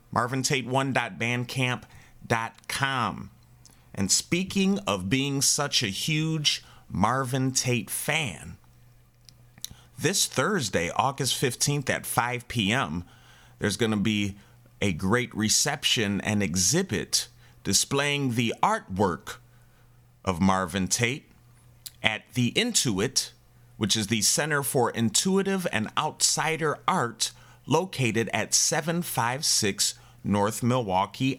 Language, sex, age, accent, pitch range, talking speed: English, male, 30-49, American, 105-130 Hz, 95 wpm